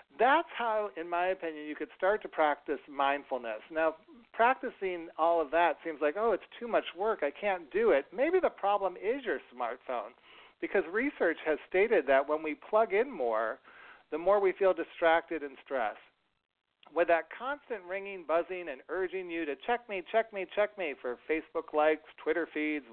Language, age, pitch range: English, 50-69, 140-195 Hz